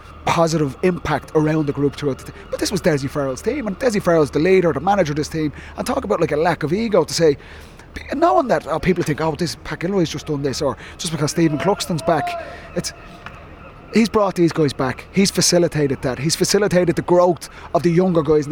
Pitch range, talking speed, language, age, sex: 135-175 Hz, 225 wpm, English, 30-49, male